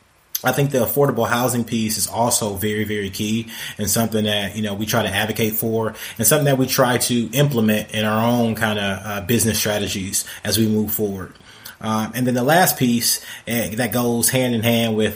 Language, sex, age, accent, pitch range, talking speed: English, male, 20-39, American, 105-120 Hz, 205 wpm